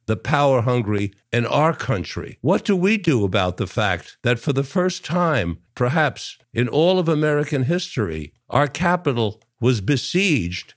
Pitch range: 120-165 Hz